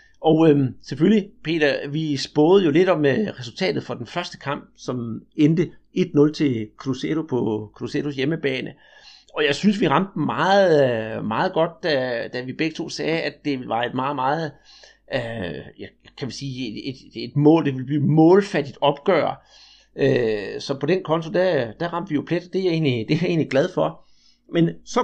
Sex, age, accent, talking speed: male, 60-79, native, 195 wpm